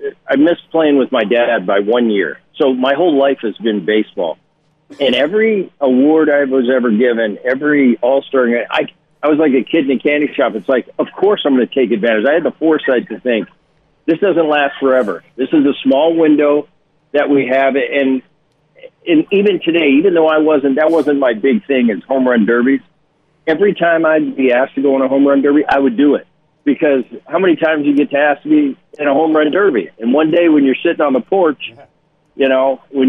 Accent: American